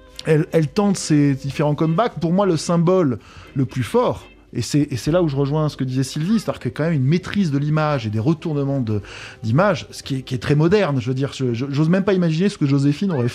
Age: 20-39